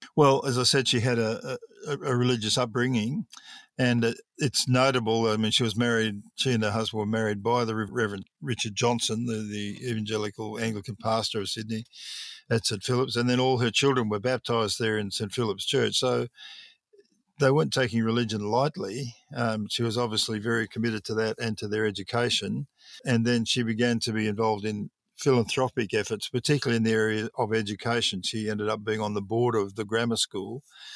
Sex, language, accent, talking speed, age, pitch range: male, English, Australian, 190 wpm, 50-69, 110-125 Hz